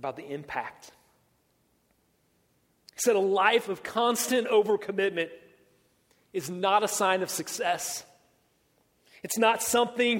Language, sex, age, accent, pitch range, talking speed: English, male, 30-49, American, 170-225 Hz, 110 wpm